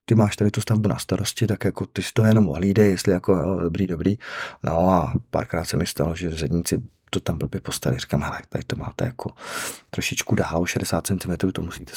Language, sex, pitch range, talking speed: Czech, male, 85-105 Hz, 215 wpm